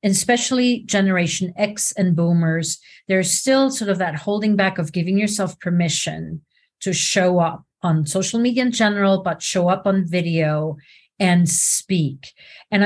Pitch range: 165-205 Hz